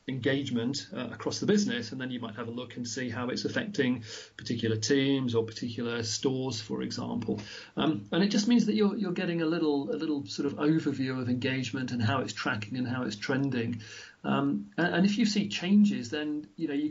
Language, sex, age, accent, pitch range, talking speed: English, male, 40-59, British, 120-150 Hz, 215 wpm